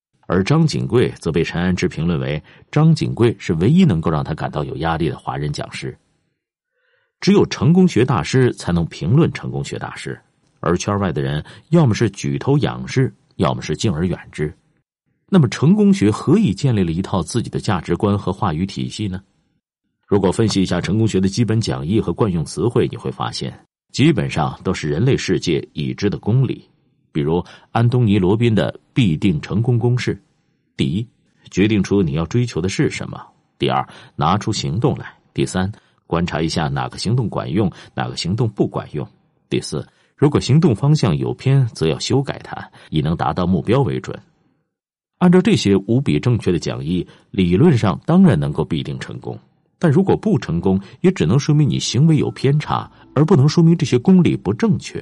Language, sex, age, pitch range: Chinese, male, 50-69, 95-155 Hz